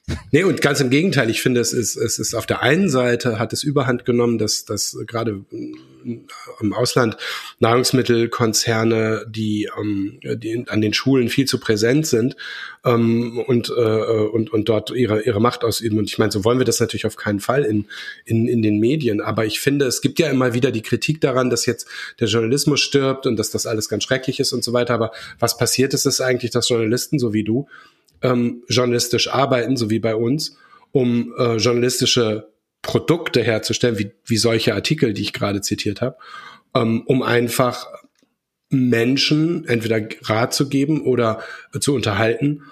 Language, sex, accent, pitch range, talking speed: German, male, German, 110-130 Hz, 180 wpm